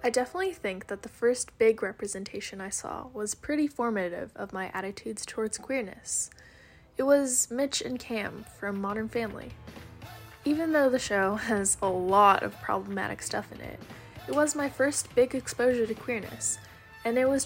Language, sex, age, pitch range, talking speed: English, female, 10-29, 205-270 Hz, 170 wpm